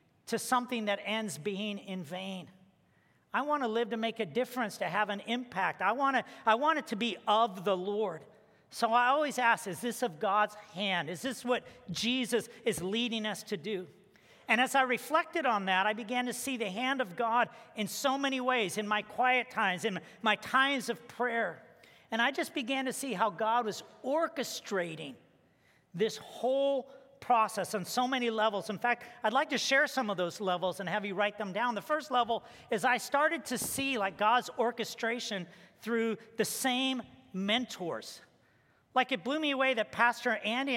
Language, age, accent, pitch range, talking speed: English, 50-69, American, 205-255 Hz, 190 wpm